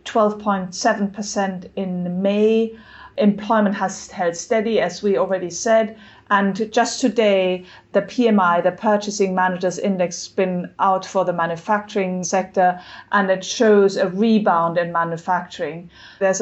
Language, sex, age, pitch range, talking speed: English, female, 30-49, 180-215 Hz, 130 wpm